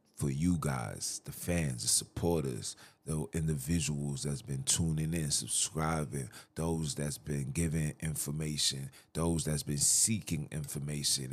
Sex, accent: male, American